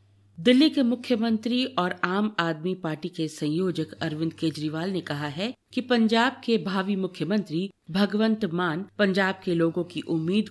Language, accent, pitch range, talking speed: Hindi, native, 160-205 Hz, 150 wpm